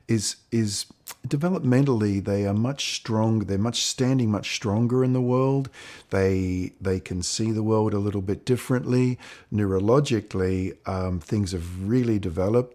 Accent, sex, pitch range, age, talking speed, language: Australian, male, 95-115 Hz, 50-69, 145 wpm, English